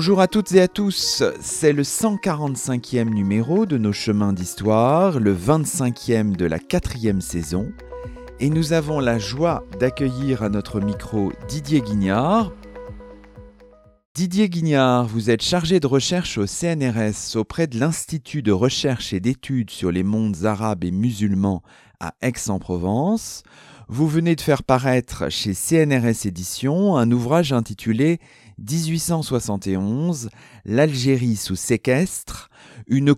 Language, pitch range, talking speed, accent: French, 100-145 Hz, 130 wpm, French